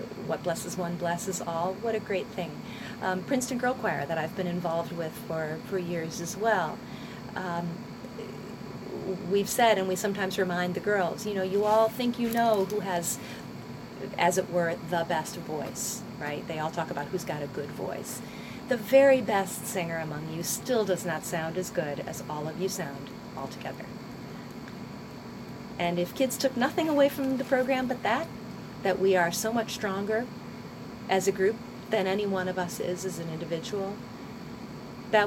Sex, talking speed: female, 180 wpm